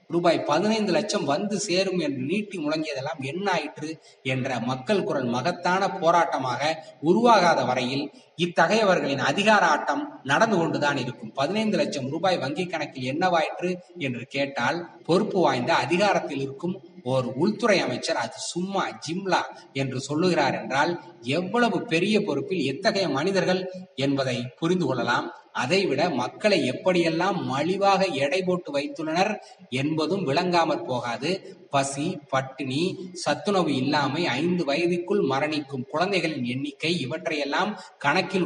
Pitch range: 135-185 Hz